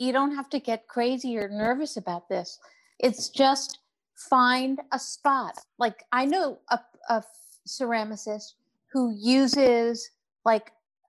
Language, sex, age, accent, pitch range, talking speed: English, female, 50-69, American, 205-255 Hz, 135 wpm